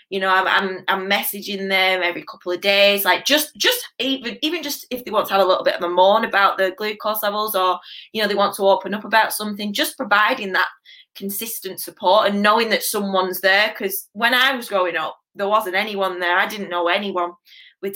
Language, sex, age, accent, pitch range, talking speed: English, female, 20-39, British, 190-240 Hz, 225 wpm